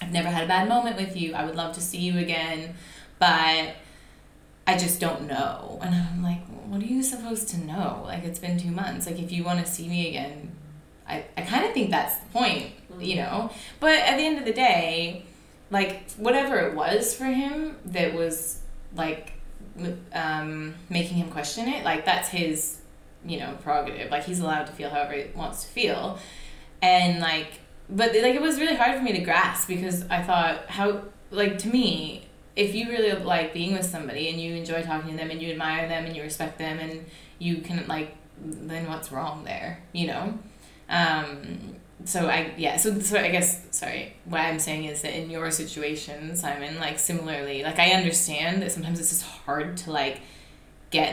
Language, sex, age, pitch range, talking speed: English, female, 20-39, 160-190 Hz, 200 wpm